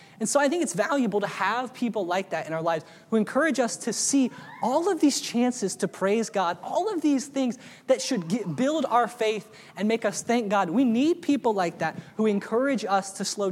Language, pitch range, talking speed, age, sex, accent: English, 180-235 Hz, 220 wpm, 20-39, male, American